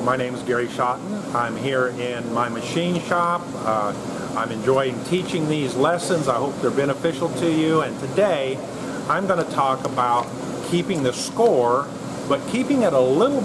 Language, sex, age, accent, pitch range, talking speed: English, male, 50-69, American, 135-180 Hz, 170 wpm